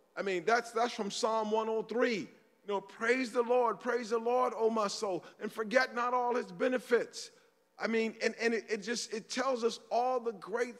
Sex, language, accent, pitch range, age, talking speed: male, English, American, 210-255 Hz, 40-59, 205 wpm